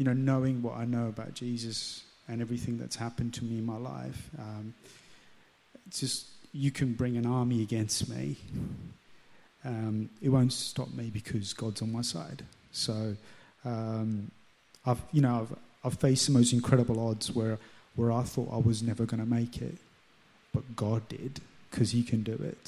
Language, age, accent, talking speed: English, 30-49, British, 180 wpm